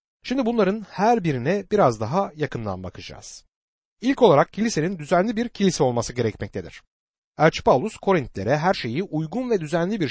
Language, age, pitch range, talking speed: Turkish, 60-79, 125-205 Hz, 140 wpm